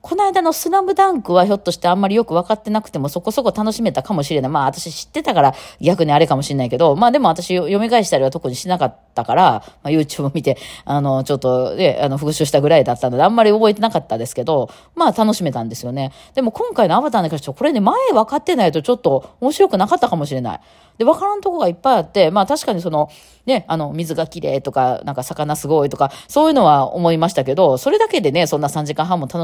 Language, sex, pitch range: Japanese, female, 140-220 Hz